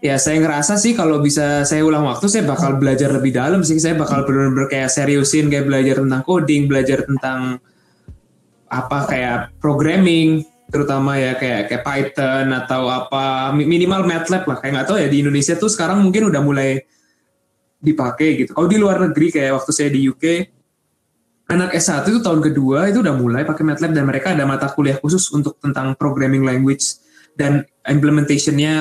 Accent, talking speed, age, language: native, 175 wpm, 20-39, Indonesian